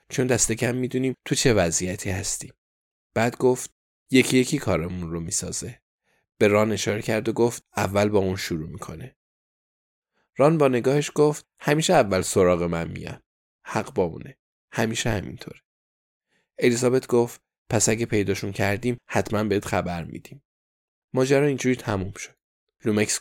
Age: 10-29